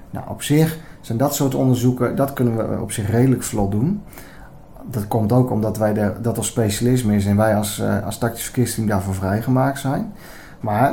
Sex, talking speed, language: male, 175 wpm, Dutch